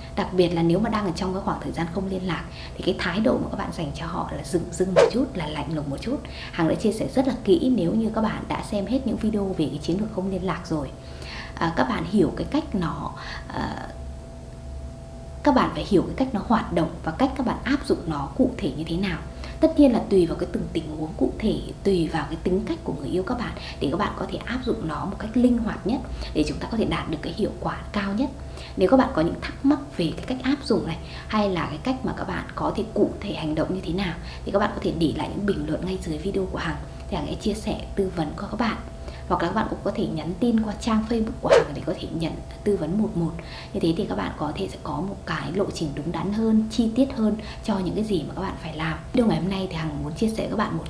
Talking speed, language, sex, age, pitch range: 290 wpm, Vietnamese, female, 20-39, 165-220 Hz